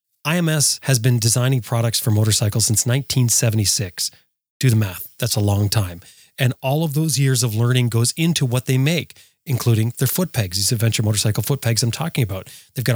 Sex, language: male, English